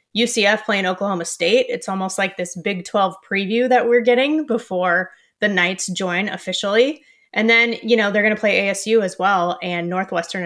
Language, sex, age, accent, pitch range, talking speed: English, female, 20-39, American, 180-225 Hz, 185 wpm